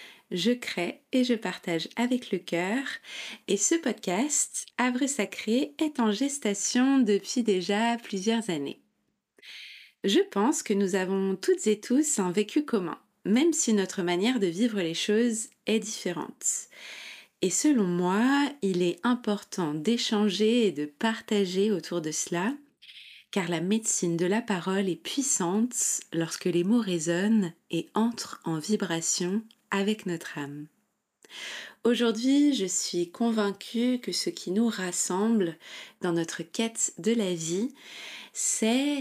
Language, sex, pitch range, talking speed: French, female, 180-240 Hz, 135 wpm